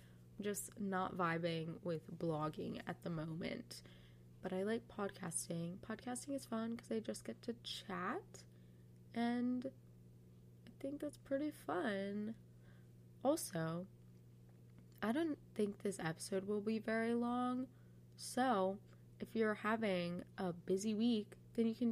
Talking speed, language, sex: 130 wpm, English, female